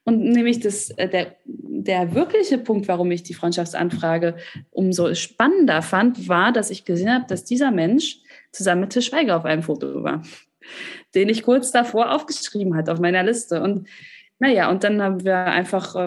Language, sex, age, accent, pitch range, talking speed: German, female, 20-39, German, 175-225 Hz, 170 wpm